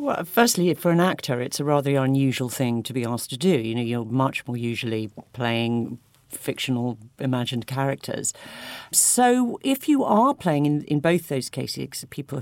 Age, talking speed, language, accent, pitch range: 50-69, 175 wpm, English, British, 125-170 Hz